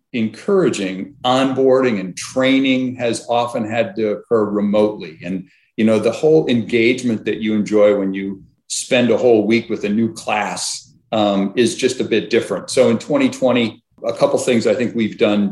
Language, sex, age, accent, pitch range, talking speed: English, male, 40-59, American, 105-125 Hz, 180 wpm